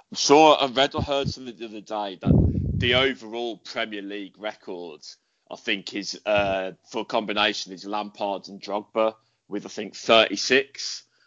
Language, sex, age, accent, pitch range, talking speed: English, male, 20-39, British, 100-120 Hz, 165 wpm